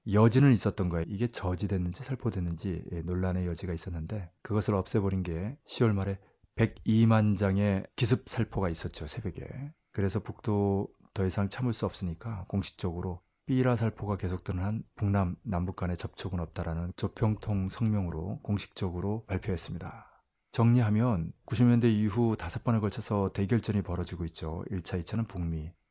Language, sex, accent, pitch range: Korean, male, native, 95-115 Hz